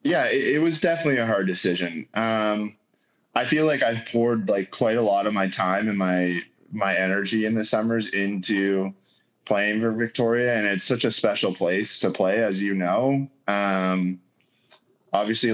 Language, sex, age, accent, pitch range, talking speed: English, male, 20-39, American, 95-120 Hz, 175 wpm